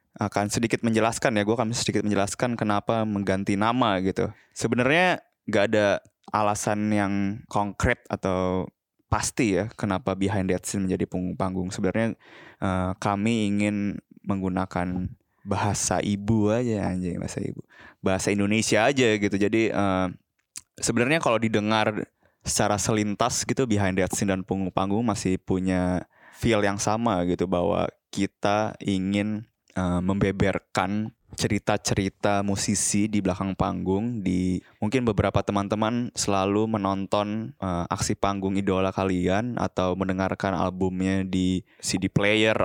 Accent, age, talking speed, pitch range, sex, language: native, 20-39, 125 wpm, 95-110 Hz, male, Indonesian